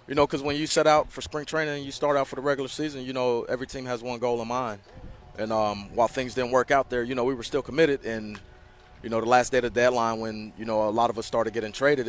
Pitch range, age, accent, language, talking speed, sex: 105-125 Hz, 30-49, American, English, 300 wpm, male